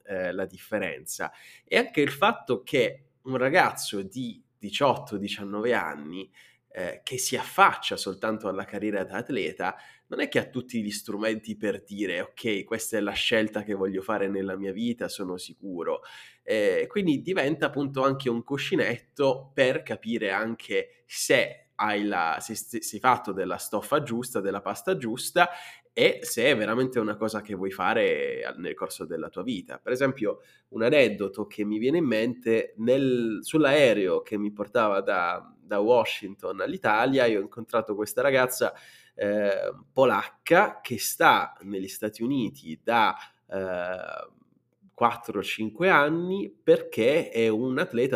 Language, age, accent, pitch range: Italian, 20-39, native, 105-145 Hz